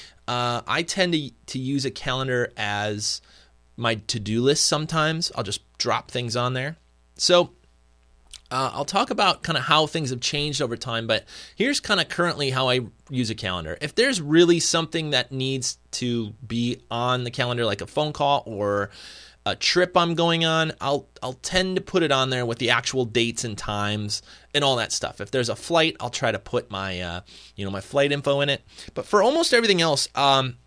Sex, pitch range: male, 105-145 Hz